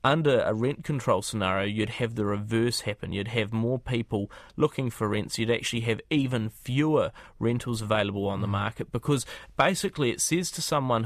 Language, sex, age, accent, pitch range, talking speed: English, male, 30-49, Australian, 110-135 Hz, 180 wpm